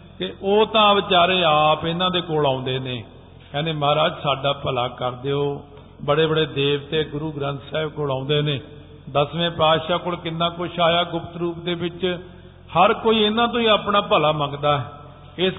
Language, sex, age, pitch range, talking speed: Punjabi, male, 50-69, 150-175 Hz, 175 wpm